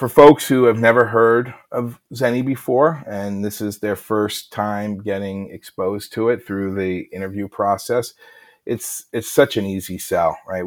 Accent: American